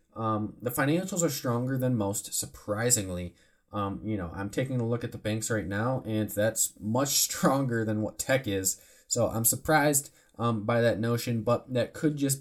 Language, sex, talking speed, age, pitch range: English, male, 190 wpm, 20-39, 100-130 Hz